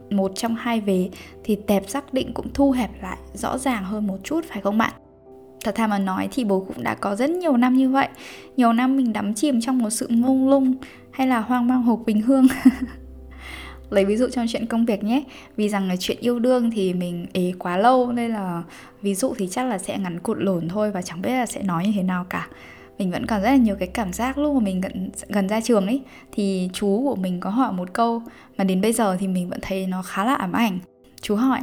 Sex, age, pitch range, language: female, 10-29, 190-250 Hz, Vietnamese